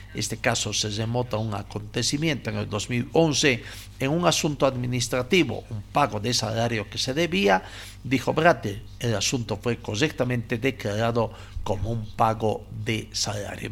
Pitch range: 105-140 Hz